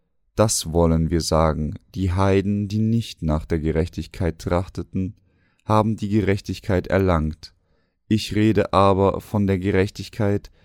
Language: German